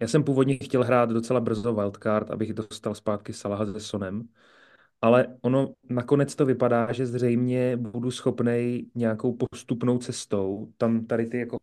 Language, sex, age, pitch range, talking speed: Czech, male, 30-49, 110-125 Hz, 155 wpm